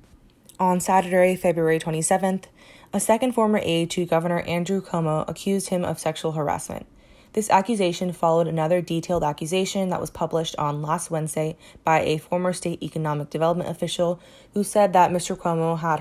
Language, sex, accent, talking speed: English, female, American, 155 wpm